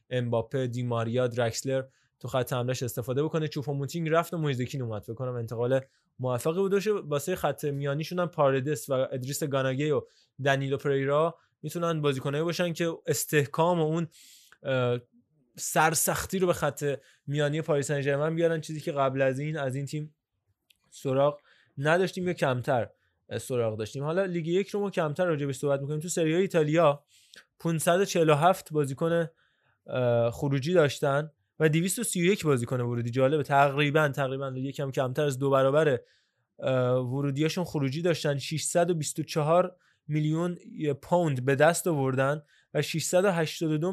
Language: Persian